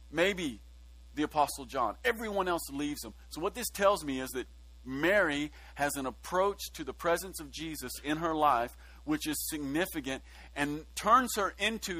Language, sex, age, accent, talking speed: English, male, 40-59, American, 170 wpm